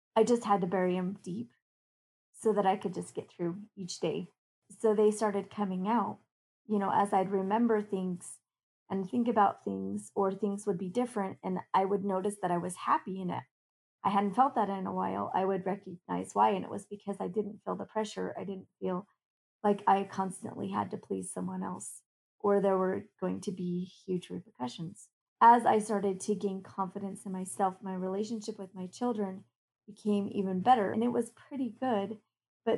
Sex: female